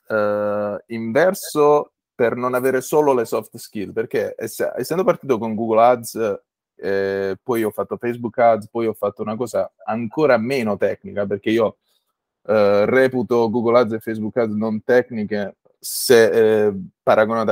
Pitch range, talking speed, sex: 105-140 Hz, 150 wpm, male